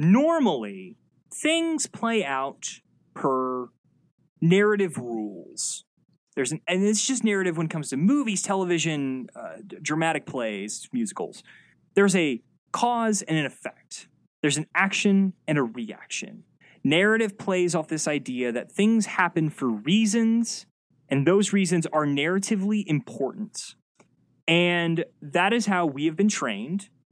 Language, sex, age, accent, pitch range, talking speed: English, male, 20-39, American, 145-210 Hz, 130 wpm